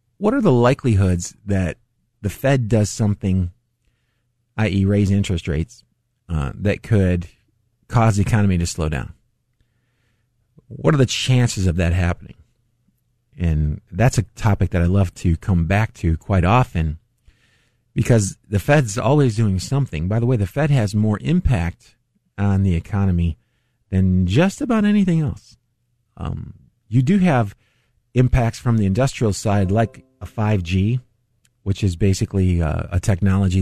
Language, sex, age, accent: English, male, 50-69, American